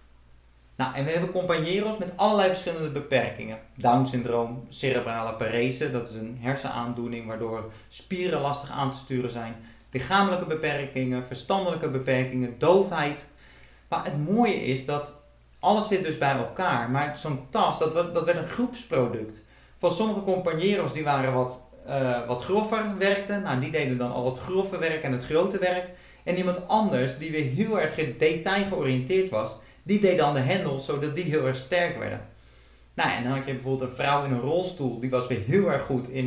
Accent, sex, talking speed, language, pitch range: Dutch, male, 175 wpm, Dutch, 125-175 Hz